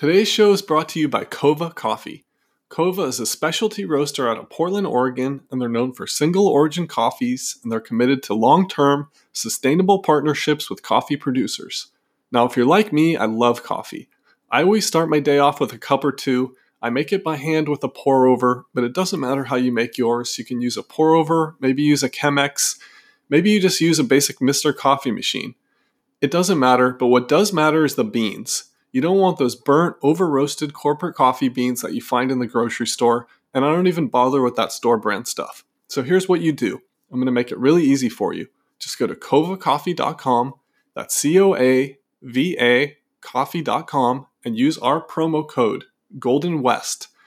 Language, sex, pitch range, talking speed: English, male, 130-175 Hz, 195 wpm